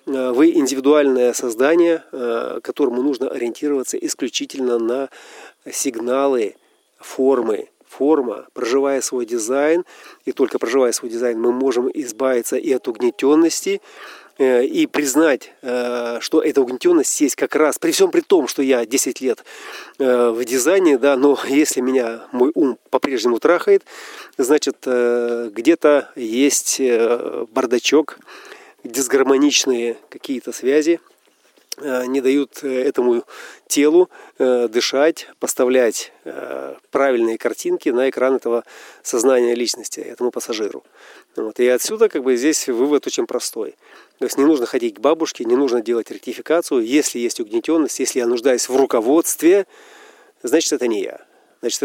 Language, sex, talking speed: Russian, male, 120 wpm